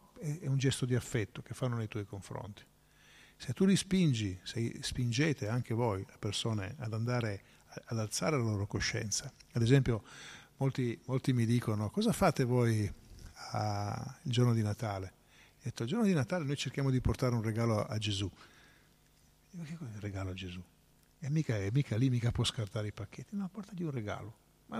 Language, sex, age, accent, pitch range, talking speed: Italian, male, 50-69, native, 110-145 Hz, 190 wpm